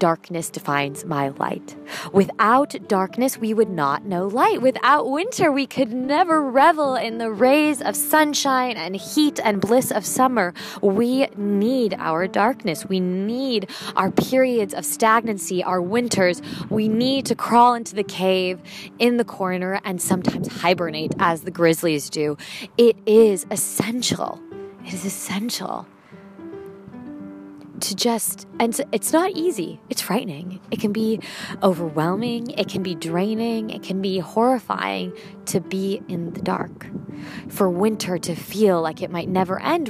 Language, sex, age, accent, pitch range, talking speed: English, female, 20-39, American, 185-235 Hz, 145 wpm